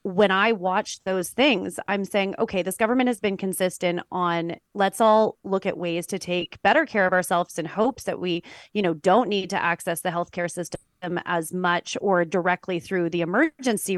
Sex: female